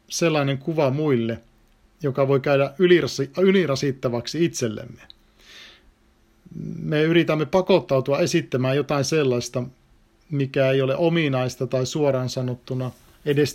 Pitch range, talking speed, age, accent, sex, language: 125-165 Hz, 95 wpm, 50-69, native, male, Finnish